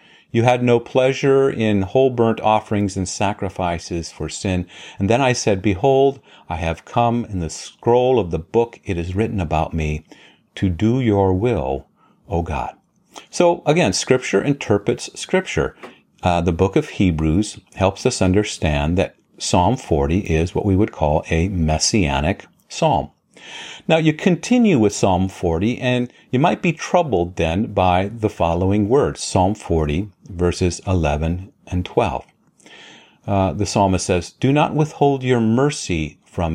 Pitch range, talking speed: 85-120 Hz, 155 wpm